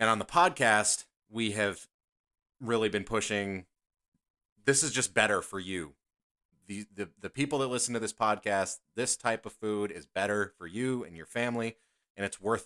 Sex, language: male, English